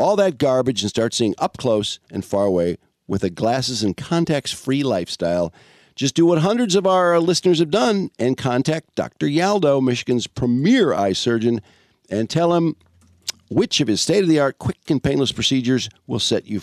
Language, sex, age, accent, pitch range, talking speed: English, male, 50-69, American, 105-155 Hz, 190 wpm